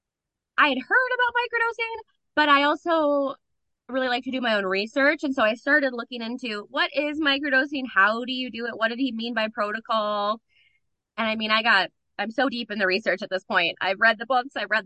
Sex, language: female, English